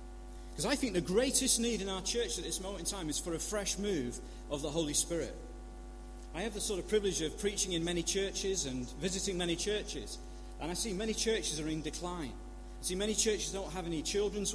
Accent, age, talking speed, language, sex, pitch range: British, 40-59, 225 wpm, English, male, 130-200 Hz